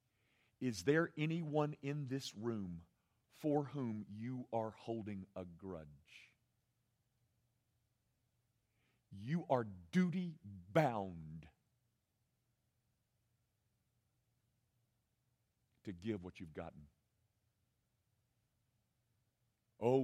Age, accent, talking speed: 50-69, American, 70 wpm